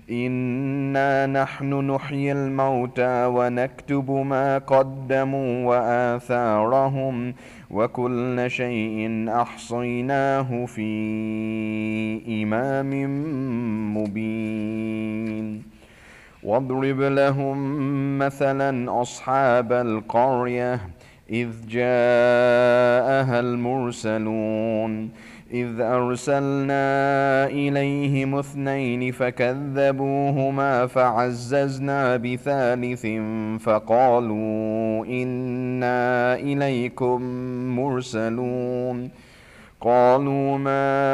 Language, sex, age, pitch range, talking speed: English, male, 30-49, 115-135 Hz, 50 wpm